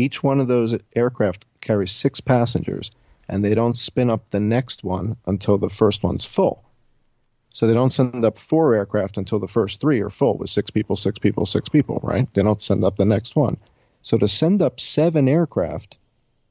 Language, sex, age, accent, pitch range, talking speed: English, male, 50-69, American, 100-120 Hz, 200 wpm